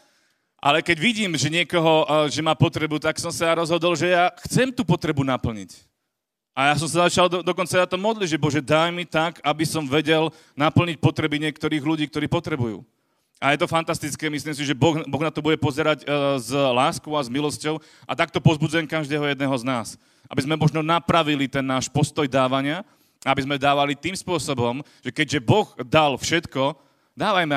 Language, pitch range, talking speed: Slovak, 130-160 Hz, 185 wpm